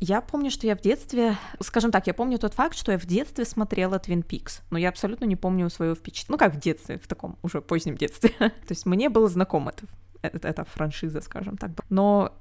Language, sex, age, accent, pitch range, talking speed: Russian, female, 20-39, native, 160-200 Hz, 220 wpm